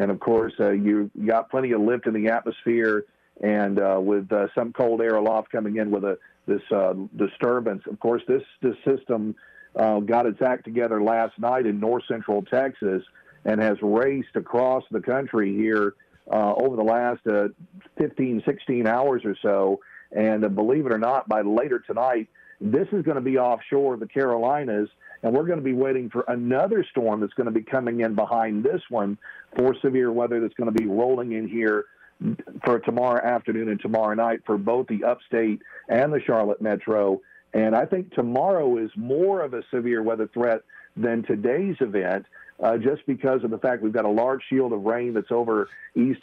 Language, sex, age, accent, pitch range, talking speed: English, male, 50-69, American, 110-125 Hz, 195 wpm